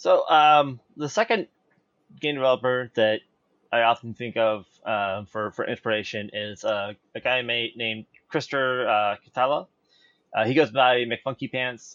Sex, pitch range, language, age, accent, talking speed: male, 110-135 Hz, English, 20-39, American, 135 wpm